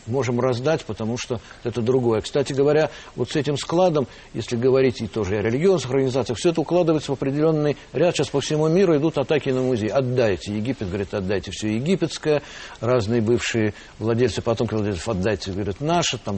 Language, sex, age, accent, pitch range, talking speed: Russian, male, 60-79, native, 115-155 Hz, 175 wpm